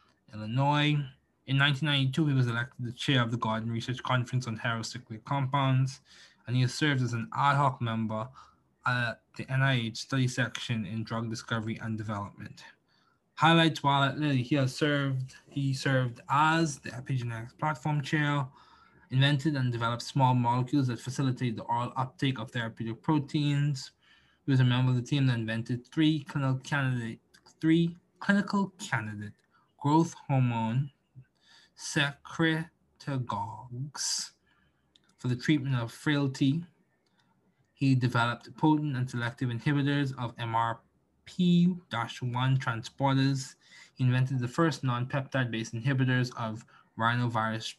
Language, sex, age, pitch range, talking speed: English, male, 20-39, 120-145 Hz, 125 wpm